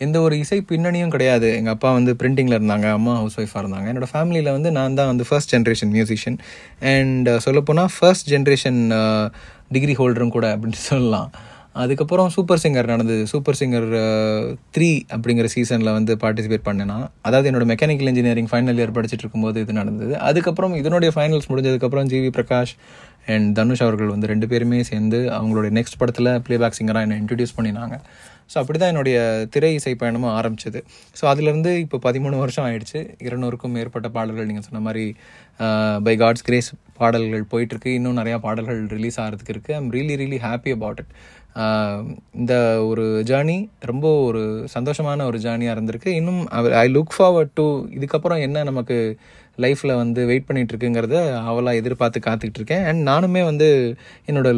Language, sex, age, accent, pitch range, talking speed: Tamil, male, 20-39, native, 110-140 Hz, 155 wpm